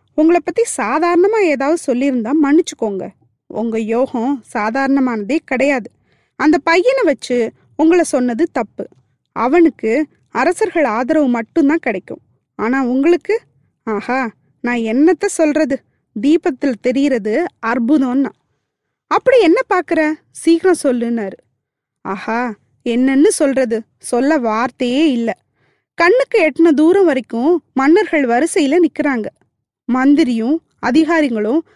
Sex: female